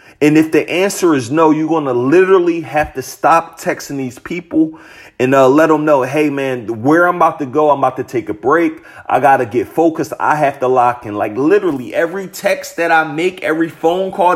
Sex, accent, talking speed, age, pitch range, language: male, American, 225 wpm, 30-49, 145-190 Hz, English